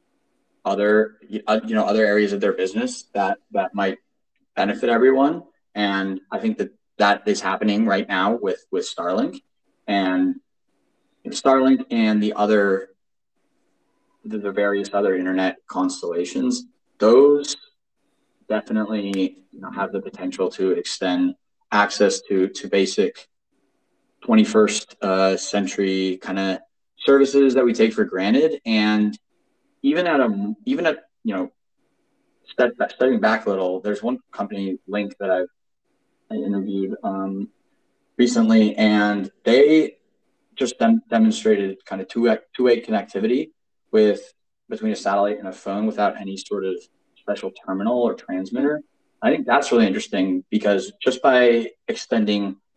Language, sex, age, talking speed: English, male, 20-39, 135 wpm